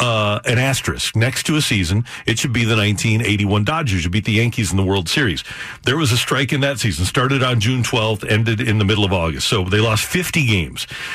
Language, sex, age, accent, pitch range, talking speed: English, male, 50-69, American, 110-140 Hz, 230 wpm